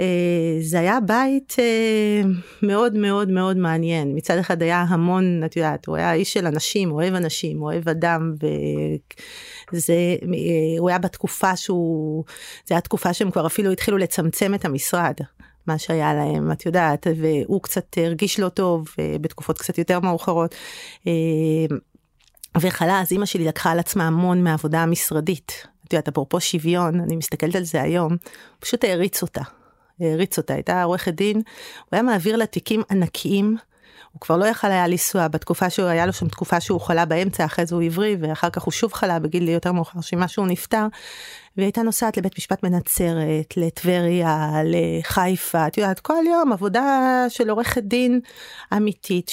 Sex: female